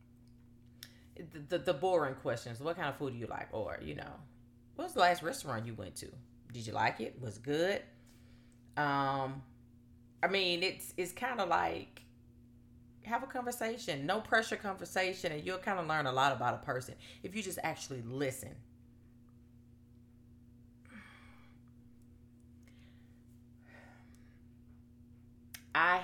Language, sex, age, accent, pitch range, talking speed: English, female, 30-49, American, 120-145 Hz, 135 wpm